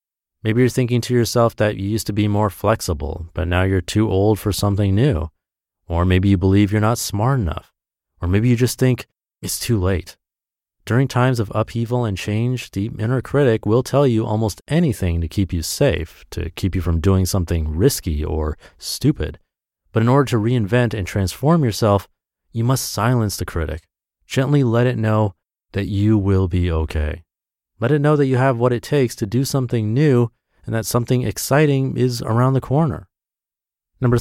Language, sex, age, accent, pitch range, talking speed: English, male, 30-49, American, 85-120 Hz, 190 wpm